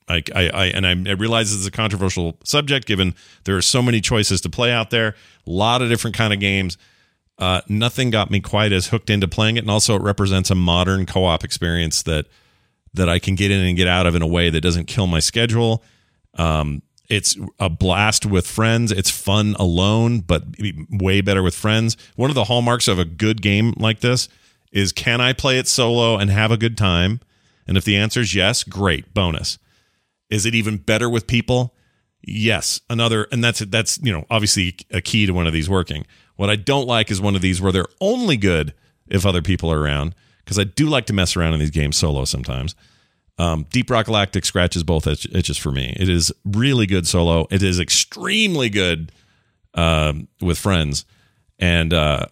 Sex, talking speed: male, 205 wpm